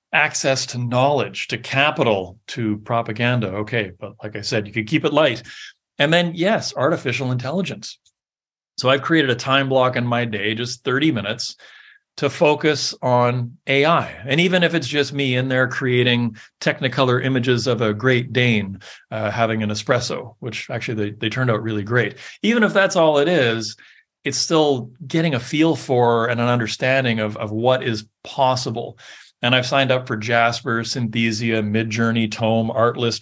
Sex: male